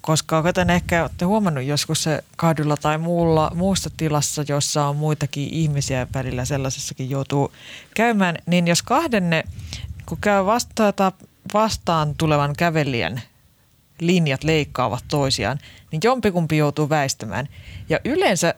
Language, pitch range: Finnish, 140-180 Hz